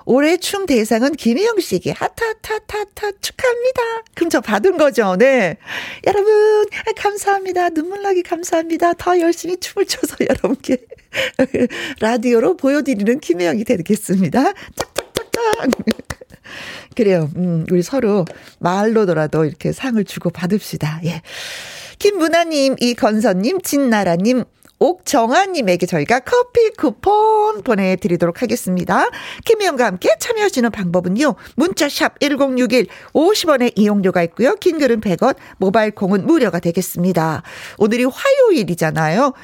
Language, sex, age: Korean, female, 40-59